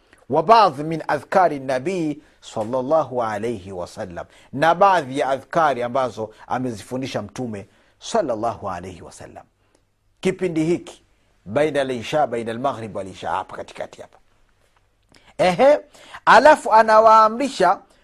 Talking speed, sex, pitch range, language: 110 wpm, male, 115-165 Hz, Swahili